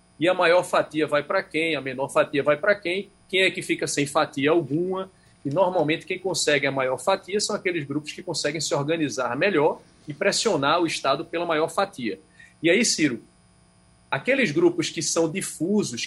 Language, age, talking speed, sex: Portuguese, 40-59, 185 wpm, male